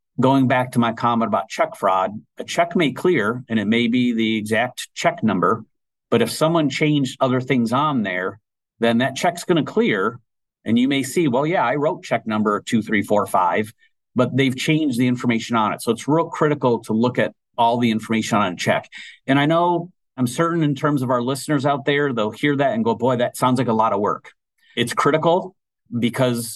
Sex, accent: male, American